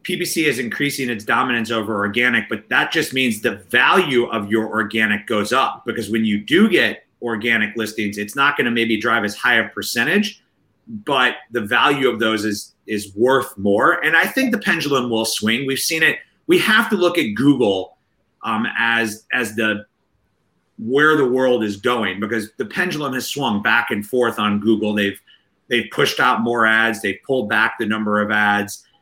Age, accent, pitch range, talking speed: 30-49, American, 110-140 Hz, 190 wpm